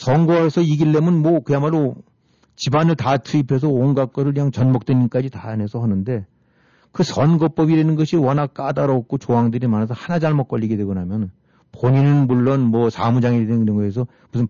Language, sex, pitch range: Korean, male, 115-150 Hz